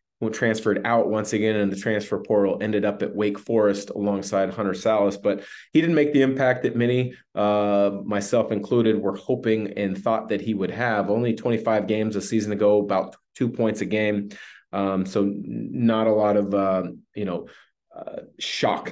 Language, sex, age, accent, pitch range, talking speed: English, male, 30-49, American, 100-115 Hz, 180 wpm